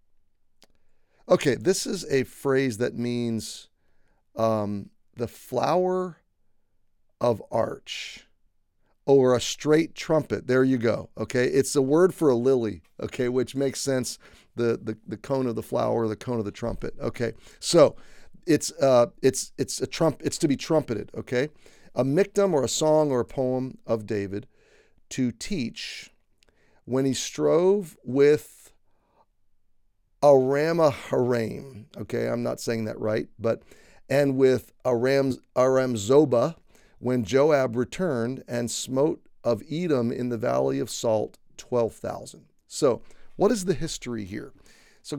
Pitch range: 110-140 Hz